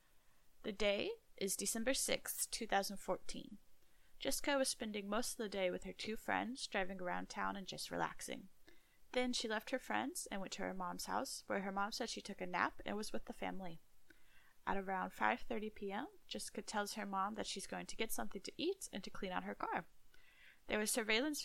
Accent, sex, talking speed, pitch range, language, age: American, female, 200 wpm, 185-245 Hz, English, 10-29